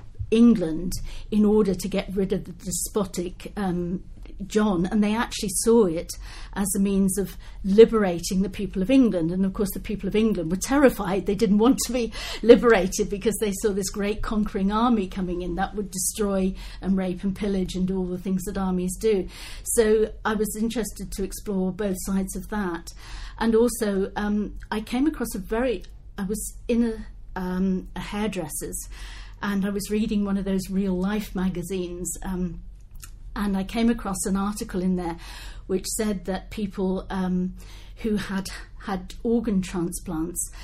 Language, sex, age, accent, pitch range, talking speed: English, female, 50-69, British, 185-215 Hz, 175 wpm